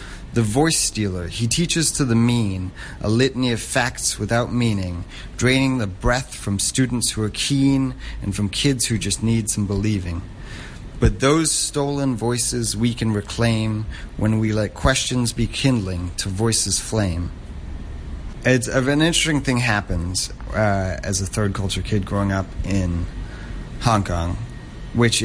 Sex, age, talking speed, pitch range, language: male, 30-49, 145 wpm, 95-120 Hz, English